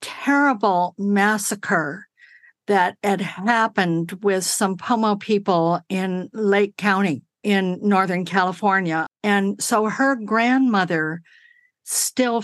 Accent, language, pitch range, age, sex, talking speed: American, English, 185-235 Hz, 60-79, female, 95 wpm